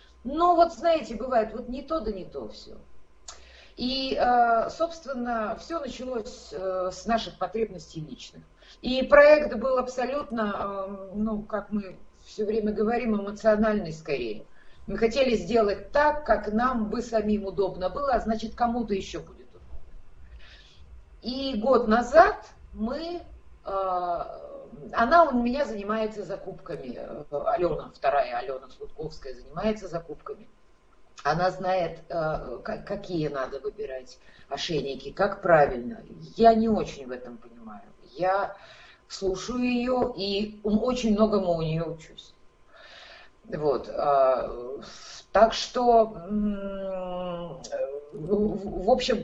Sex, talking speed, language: female, 110 wpm, Russian